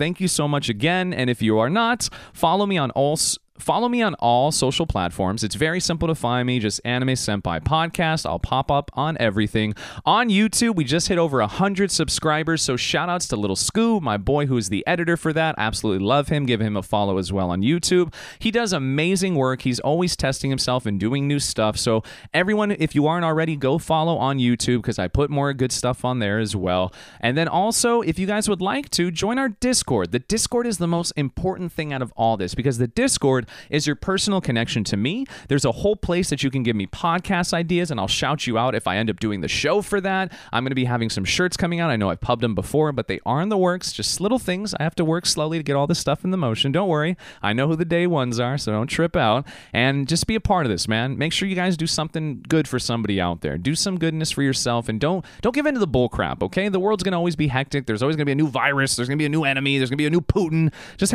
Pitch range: 120-175 Hz